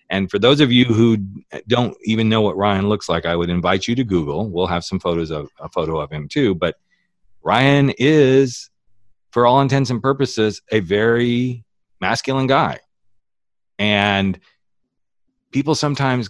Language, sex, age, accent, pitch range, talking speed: English, male, 40-59, American, 90-115 Hz, 160 wpm